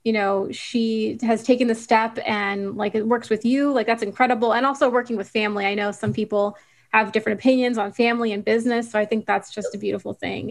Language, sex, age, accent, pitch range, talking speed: English, female, 20-39, American, 210-240 Hz, 230 wpm